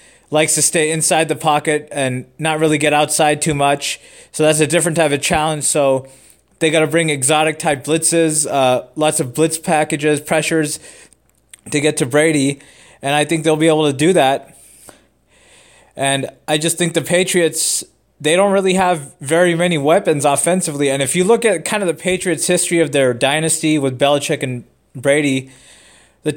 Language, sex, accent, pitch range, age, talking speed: English, male, American, 140-165 Hz, 20-39, 180 wpm